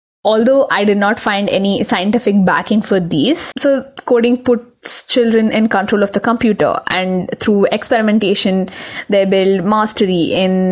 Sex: female